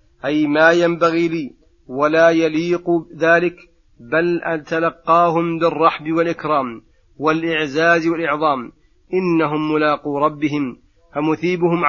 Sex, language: male, Arabic